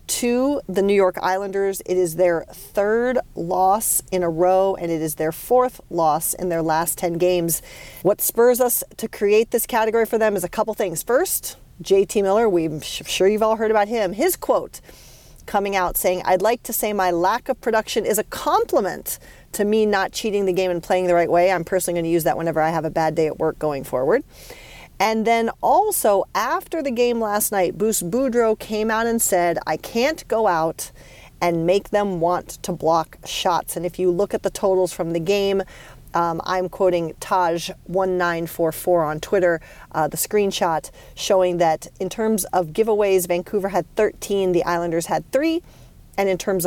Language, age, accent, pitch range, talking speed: English, 40-59, American, 170-215 Hz, 195 wpm